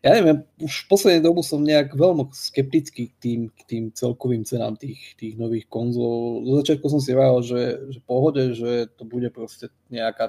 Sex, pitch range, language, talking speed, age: male, 120-135 Hz, Slovak, 190 wpm, 20-39